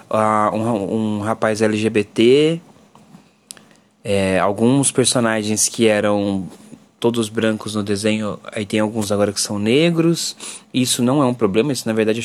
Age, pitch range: 20-39, 110-140 Hz